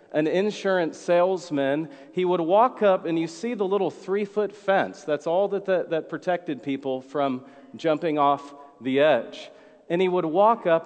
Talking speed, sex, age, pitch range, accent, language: 170 wpm, male, 40-59, 140-180 Hz, American, English